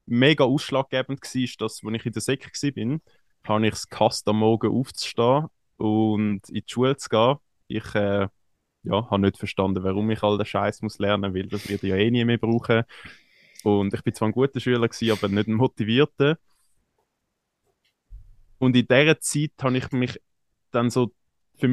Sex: male